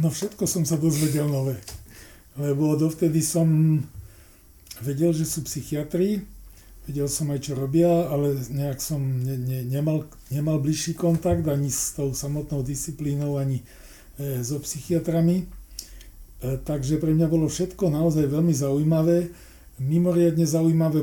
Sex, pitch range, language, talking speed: male, 135-155 Hz, Slovak, 125 wpm